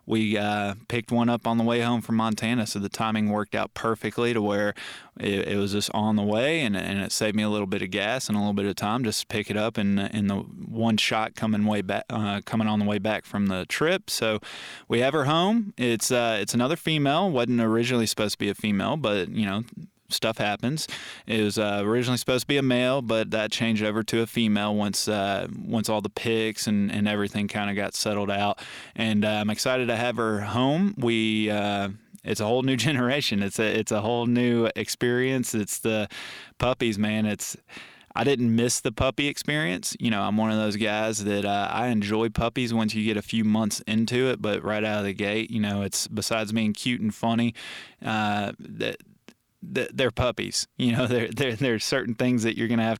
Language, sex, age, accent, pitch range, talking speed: English, male, 20-39, American, 105-115 Hz, 225 wpm